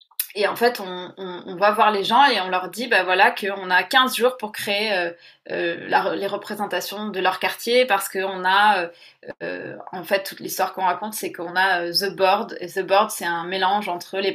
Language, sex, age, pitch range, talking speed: French, female, 20-39, 180-205 Hz, 220 wpm